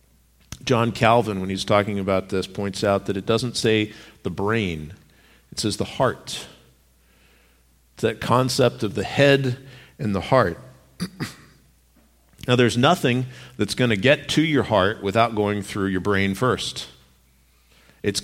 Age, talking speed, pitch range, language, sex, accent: 50-69, 150 wpm, 95-135 Hz, English, male, American